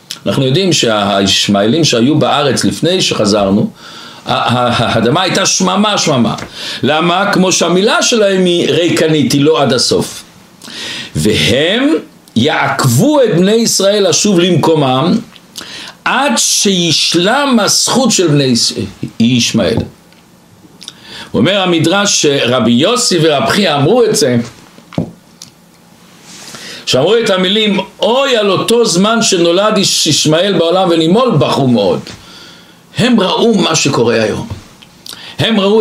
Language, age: Hebrew, 60-79